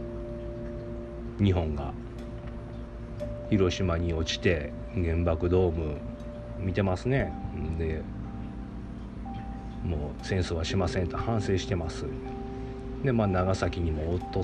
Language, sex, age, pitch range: Japanese, male, 40-59, 90-120 Hz